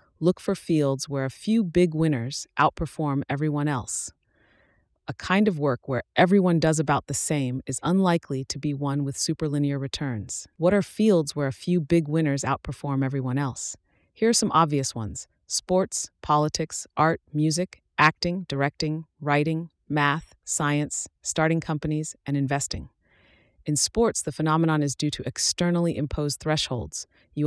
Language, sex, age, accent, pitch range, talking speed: English, female, 30-49, American, 140-165 Hz, 150 wpm